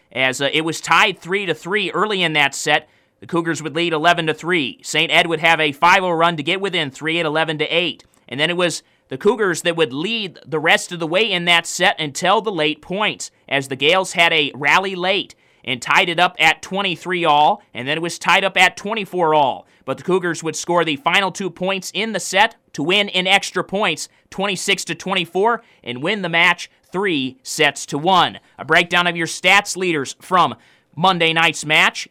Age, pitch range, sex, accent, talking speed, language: 30-49, 155-185 Hz, male, American, 205 wpm, English